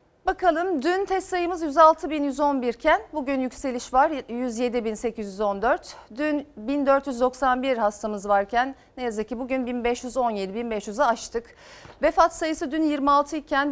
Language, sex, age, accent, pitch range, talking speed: Turkish, female, 40-59, native, 230-295 Hz, 115 wpm